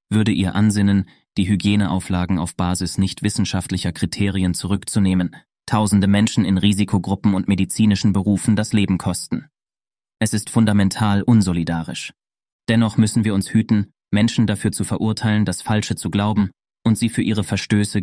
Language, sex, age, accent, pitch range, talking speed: German, male, 30-49, German, 95-110 Hz, 140 wpm